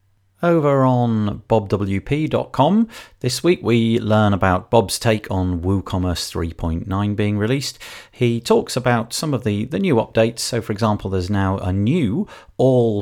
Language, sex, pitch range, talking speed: English, male, 85-120 Hz, 145 wpm